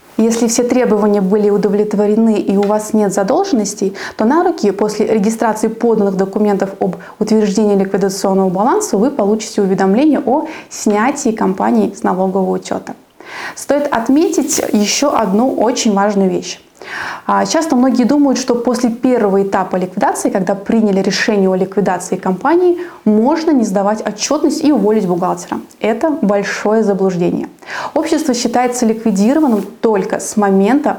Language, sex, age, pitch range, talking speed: Russian, female, 20-39, 200-245 Hz, 130 wpm